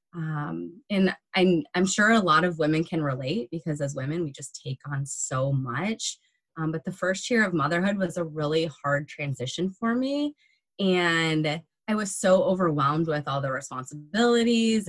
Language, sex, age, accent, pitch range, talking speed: English, female, 20-39, American, 145-185 Hz, 175 wpm